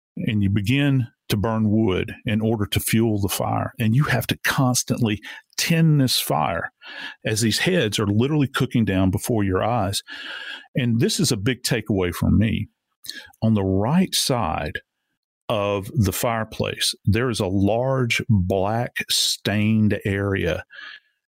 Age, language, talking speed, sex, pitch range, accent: 50-69, English, 145 wpm, male, 100-125 Hz, American